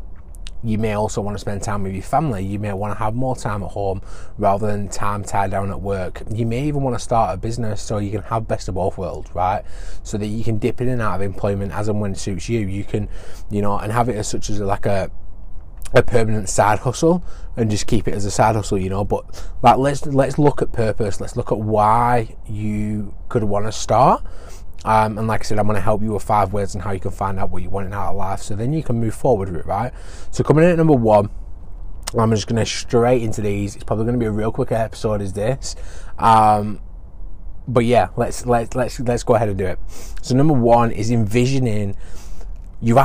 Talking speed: 245 wpm